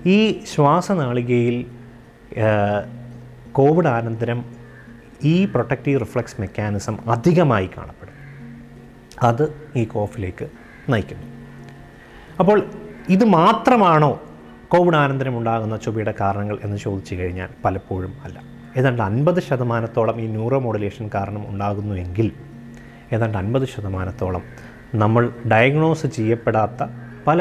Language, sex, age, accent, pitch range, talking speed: Malayalam, male, 30-49, native, 110-135 Hz, 90 wpm